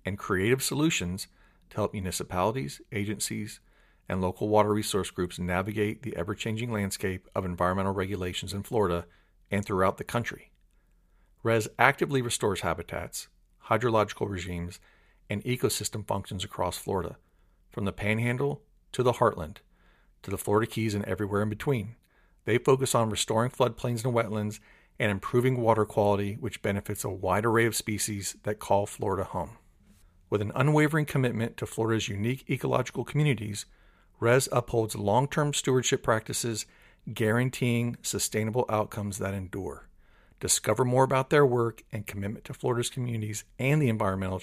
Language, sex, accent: English, male, American